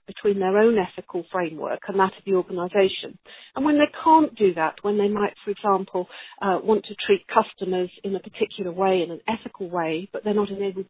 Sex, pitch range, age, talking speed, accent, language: female, 185-225 Hz, 50-69, 210 wpm, British, English